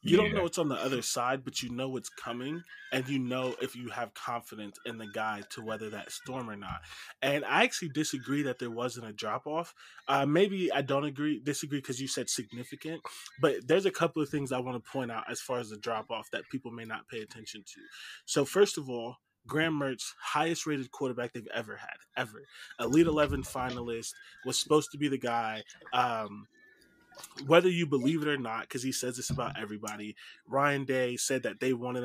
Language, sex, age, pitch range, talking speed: English, male, 20-39, 120-150 Hz, 210 wpm